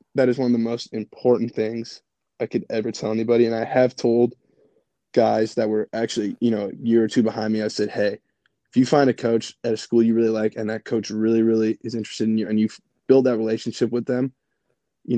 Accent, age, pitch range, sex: American, 20-39, 110-125 Hz, male